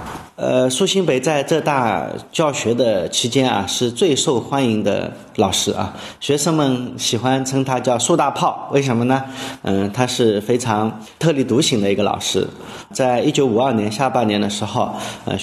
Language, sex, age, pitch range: Chinese, male, 30-49, 105-140 Hz